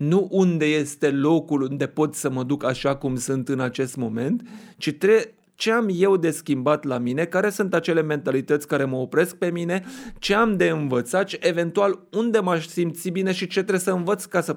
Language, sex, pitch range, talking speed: Romanian, male, 145-195 Hz, 200 wpm